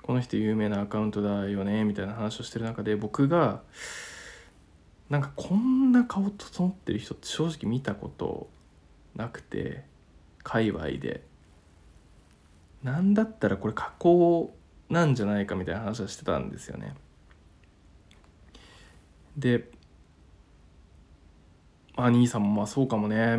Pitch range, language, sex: 95-125 Hz, Japanese, male